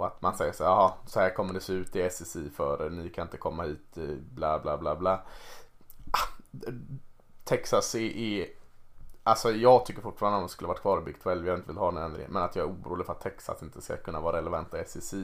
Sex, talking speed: male, 220 wpm